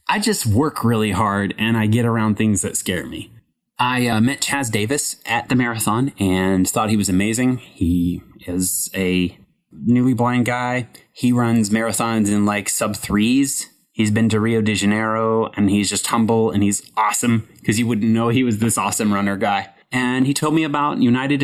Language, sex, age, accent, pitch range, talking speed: English, male, 30-49, American, 95-115 Hz, 190 wpm